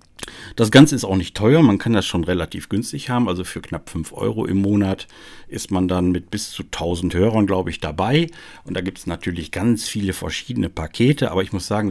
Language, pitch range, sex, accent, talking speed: German, 90-110 Hz, male, German, 220 wpm